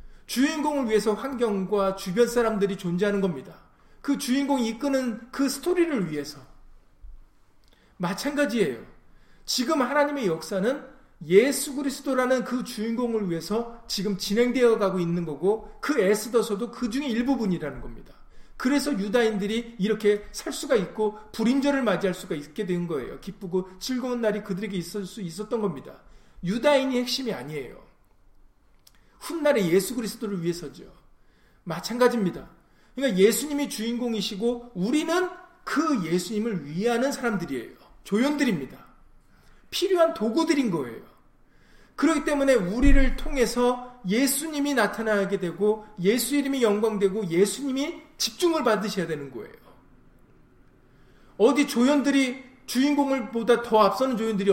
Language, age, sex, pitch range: Korean, 40-59, male, 195-270 Hz